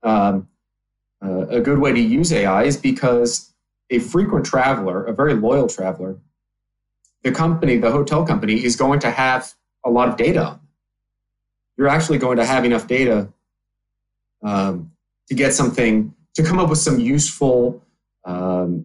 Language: English